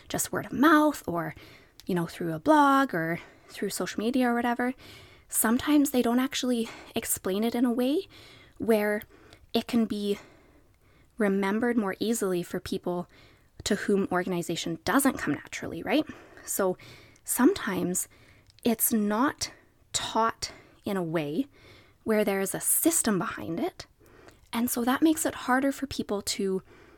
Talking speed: 145 wpm